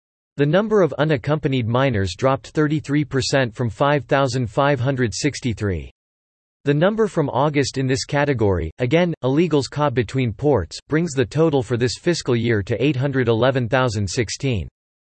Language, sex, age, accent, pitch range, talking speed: English, male, 40-59, American, 115-150 Hz, 120 wpm